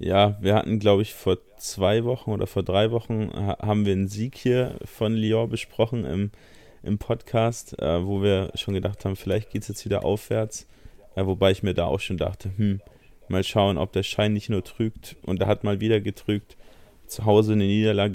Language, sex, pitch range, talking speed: German, male, 95-105 Hz, 205 wpm